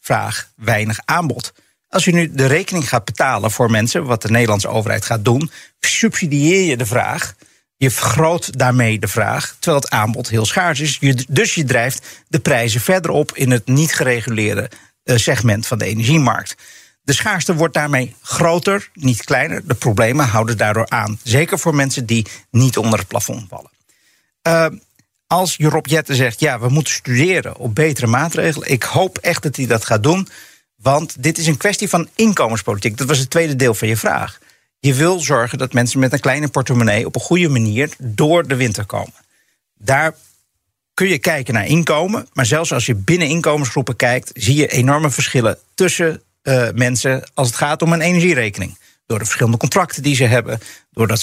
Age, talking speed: 50-69, 180 wpm